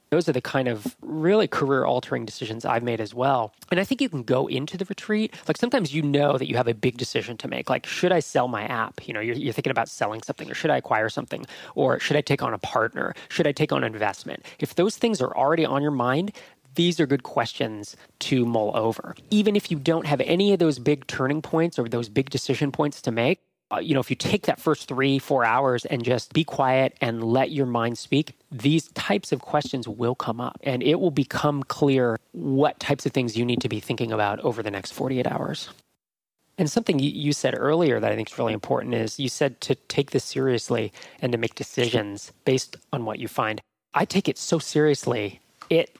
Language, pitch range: English, 125-155 Hz